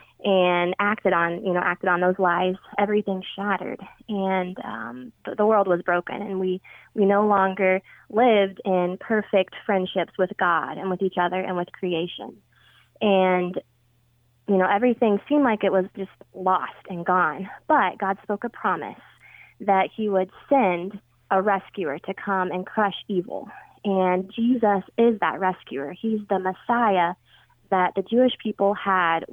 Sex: female